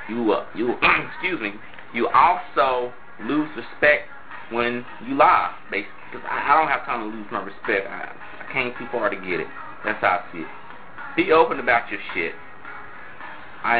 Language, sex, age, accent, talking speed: English, male, 30-49, American, 185 wpm